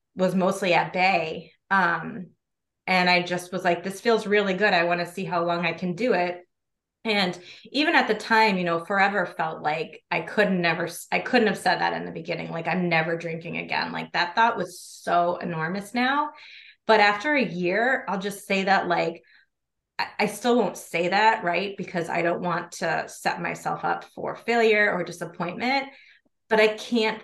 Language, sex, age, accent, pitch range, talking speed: English, female, 20-39, American, 175-220 Hz, 185 wpm